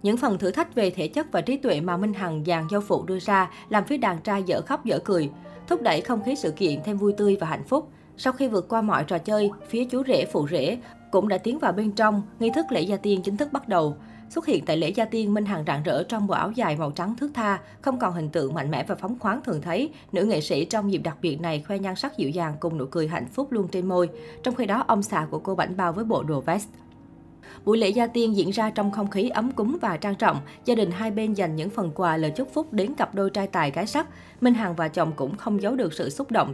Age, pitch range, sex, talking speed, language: 20-39, 170-225 Hz, female, 280 wpm, Vietnamese